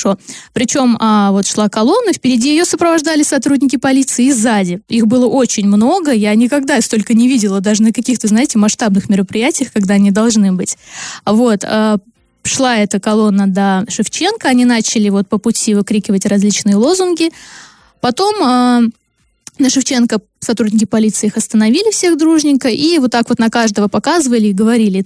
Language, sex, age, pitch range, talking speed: Russian, female, 20-39, 210-260 Hz, 140 wpm